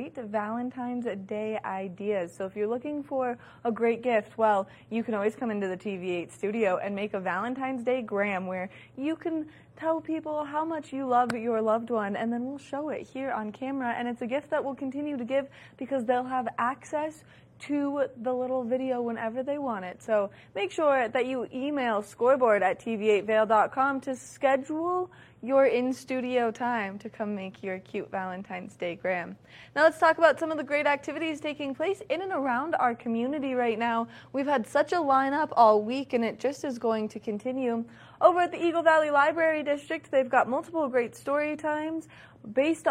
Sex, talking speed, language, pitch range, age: female, 195 wpm, English, 220-280 Hz, 20-39